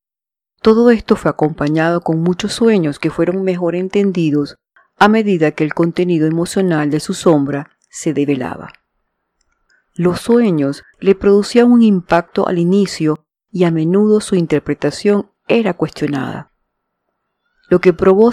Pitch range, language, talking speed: 160-210 Hz, English, 130 wpm